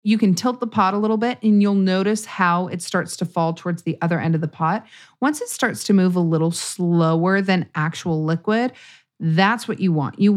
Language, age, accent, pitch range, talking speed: English, 30-49, American, 160-200 Hz, 225 wpm